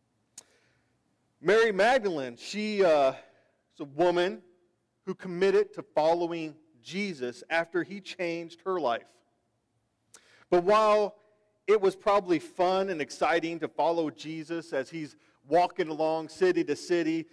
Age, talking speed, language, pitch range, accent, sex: 40-59, 120 wpm, English, 135-200 Hz, American, male